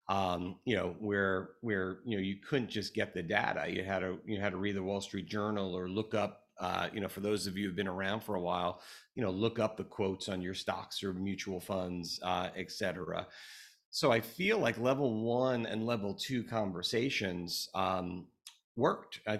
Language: English